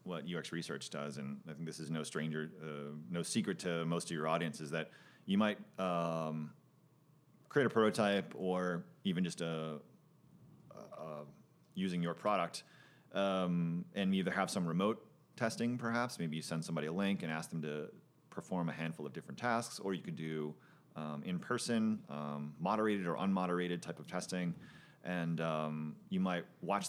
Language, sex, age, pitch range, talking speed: English, male, 30-49, 80-95 Hz, 165 wpm